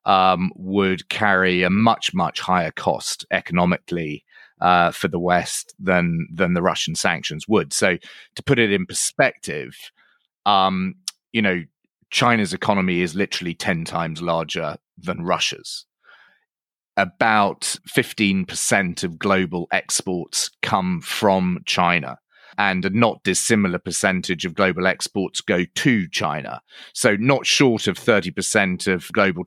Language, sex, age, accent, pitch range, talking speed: English, male, 30-49, British, 90-105 Hz, 130 wpm